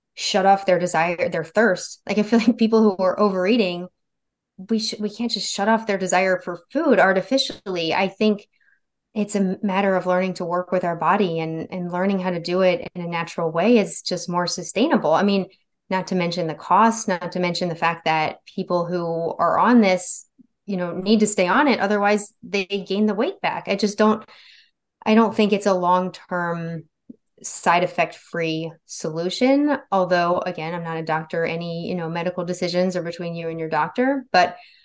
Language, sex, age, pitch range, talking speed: English, female, 20-39, 170-210 Hz, 200 wpm